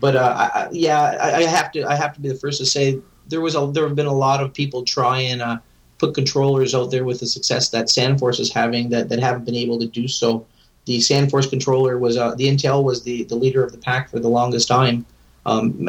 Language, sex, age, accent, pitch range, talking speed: English, male, 30-49, American, 120-130 Hz, 250 wpm